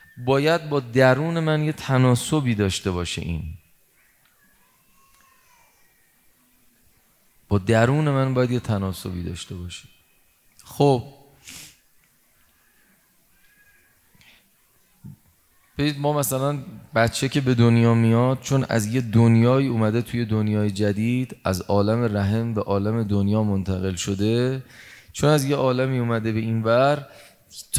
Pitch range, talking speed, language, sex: 110-140 Hz, 110 wpm, Persian, male